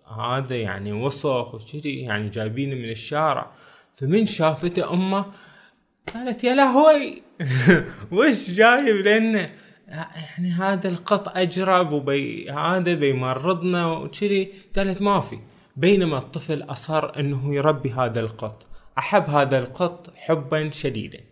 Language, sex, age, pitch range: Arabic, male, 20-39, 130-180 Hz